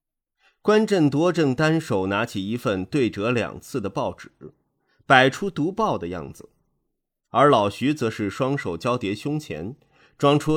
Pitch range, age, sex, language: 100-145 Hz, 30-49, male, Chinese